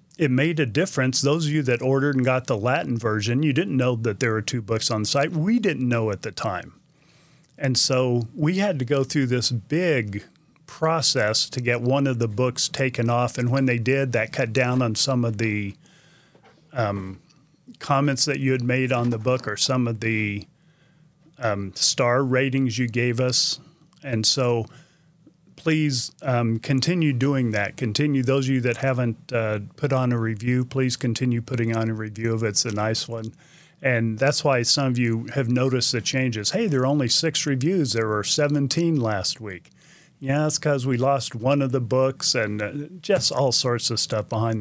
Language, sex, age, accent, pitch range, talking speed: English, male, 40-59, American, 115-145 Hz, 195 wpm